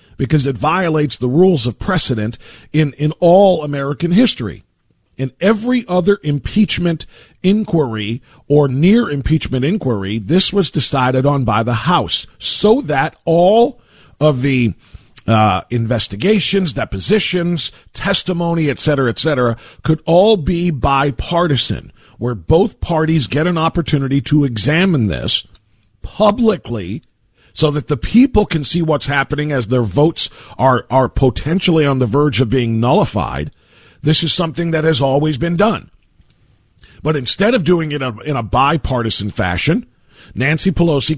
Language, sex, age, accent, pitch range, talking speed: English, male, 50-69, American, 120-170 Hz, 140 wpm